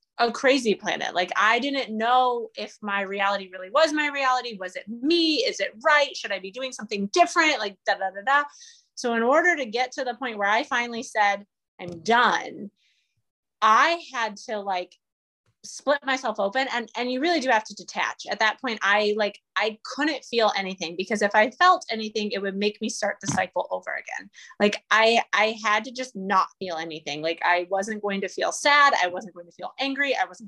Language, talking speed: English, 210 wpm